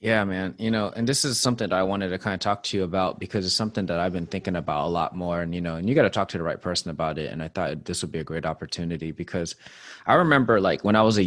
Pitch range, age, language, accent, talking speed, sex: 90-110 Hz, 20-39, English, American, 320 wpm, male